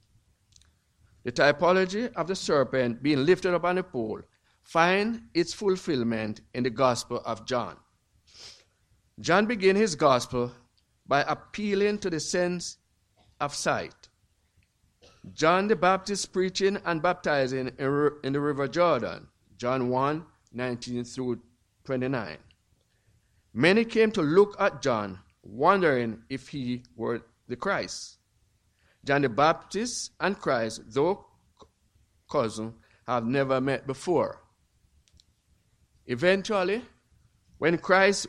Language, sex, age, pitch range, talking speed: English, male, 50-69, 115-175 Hz, 110 wpm